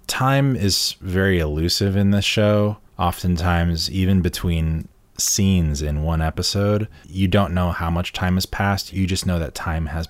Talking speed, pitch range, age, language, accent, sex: 165 wpm, 80-95 Hz, 20-39, English, American, male